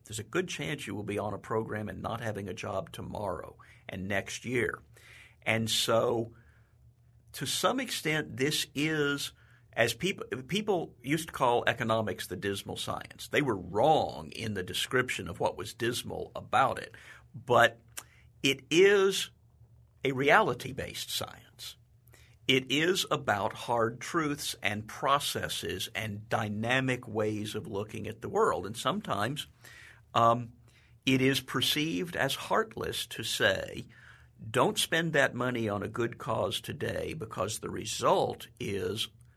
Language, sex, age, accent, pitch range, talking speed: English, male, 50-69, American, 110-130 Hz, 140 wpm